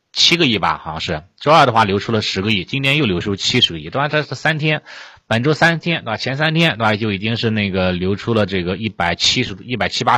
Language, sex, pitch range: Chinese, male, 95-125 Hz